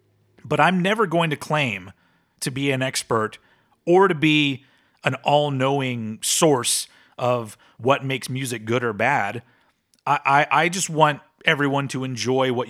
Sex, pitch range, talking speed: male, 130-195 Hz, 150 wpm